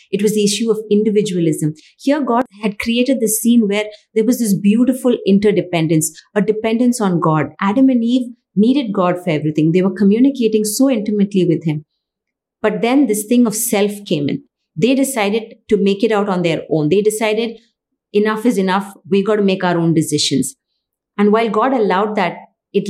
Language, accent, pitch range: English, Indian, 185-230 Hz